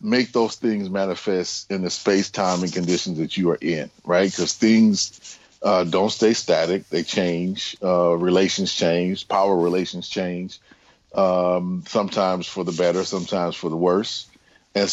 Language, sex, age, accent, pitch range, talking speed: English, male, 40-59, American, 90-105 Hz, 155 wpm